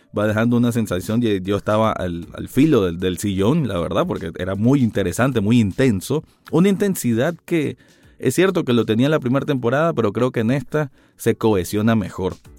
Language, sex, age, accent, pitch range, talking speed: Spanish, male, 30-49, Venezuelan, 100-135 Hz, 195 wpm